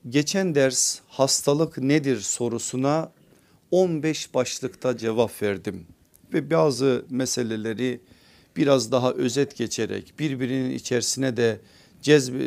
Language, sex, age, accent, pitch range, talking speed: Turkish, male, 50-69, native, 125-160 Hz, 95 wpm